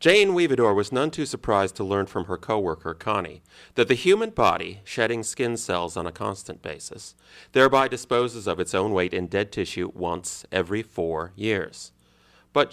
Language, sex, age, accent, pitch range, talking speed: English, male, 30-49, American, 90-130 Hz, 175 wpm